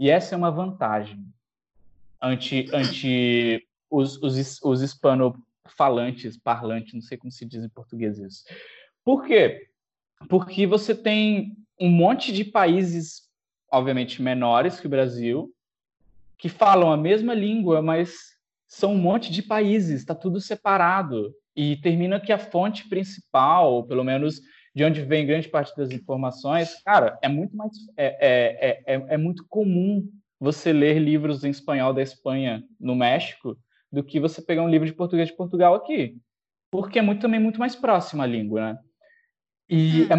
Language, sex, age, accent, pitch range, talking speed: Portuguese, male, 20-39, Brazilian, 135-195 Hz, 155 wpm